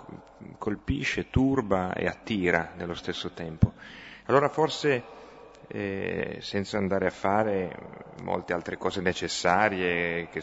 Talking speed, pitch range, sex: 110 wpm, 85-100 Hz, male